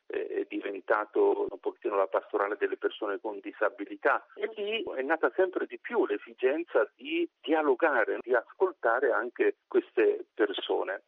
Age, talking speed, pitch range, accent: 40-59, 135 wpm, 355-425 Hz, native